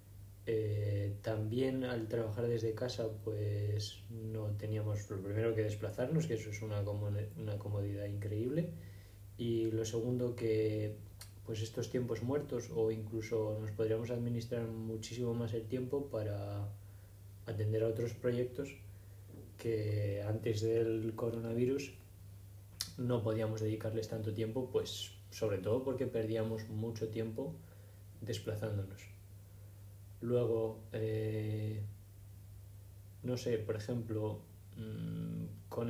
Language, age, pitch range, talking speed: Spanish, 20-39, 100-115 Hz, 110 wpm